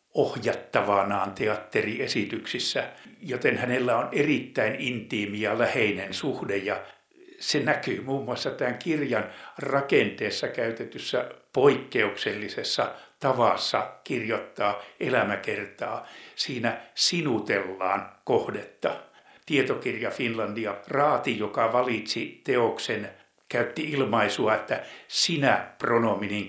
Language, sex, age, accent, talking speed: Finnish, male, 60-79, native, 80 wpm